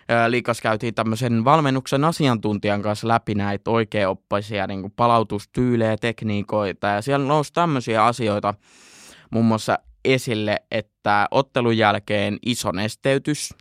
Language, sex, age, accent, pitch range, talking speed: Finnish, male, 20-39, native, 105-120 Hz, 110 wpm